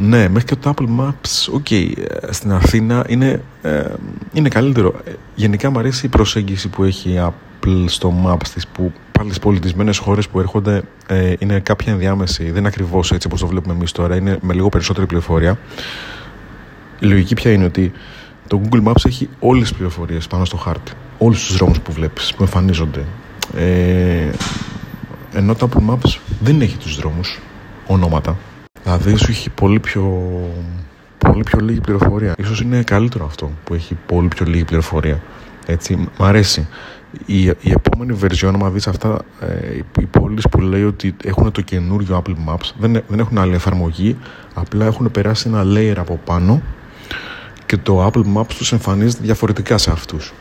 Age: 30-49